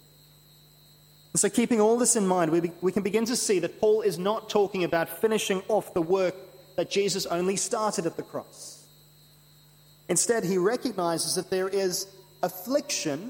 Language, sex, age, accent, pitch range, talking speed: English, male, 30-49, Australian, 150-205 Hz, 160 wpm